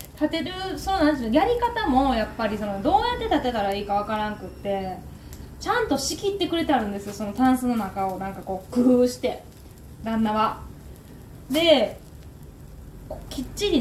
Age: 20-39